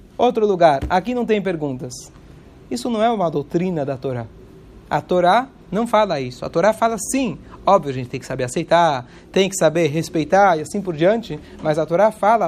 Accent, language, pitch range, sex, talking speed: Brazilian, Portuguese, 165-220 Hz, male, 195 wpm